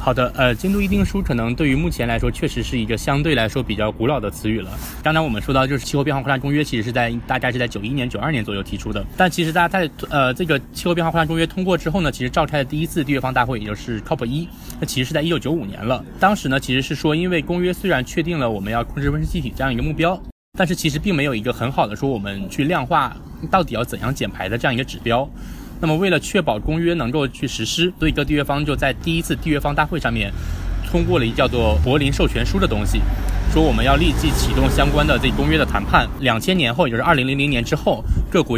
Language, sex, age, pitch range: Chinese, male, 20-39, 115-155 Hz